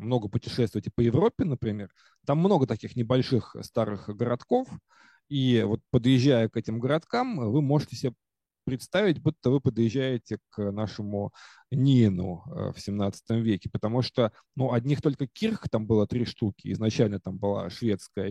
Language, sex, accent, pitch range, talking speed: Russian, male, native, 105-130 Hz, 145 wpm